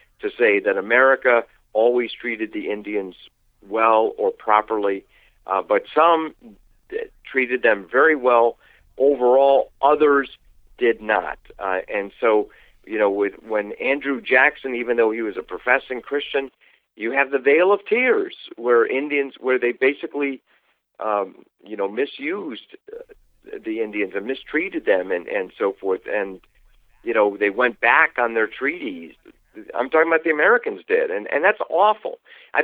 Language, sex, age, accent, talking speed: English, male, 50-69, American, 155 wpm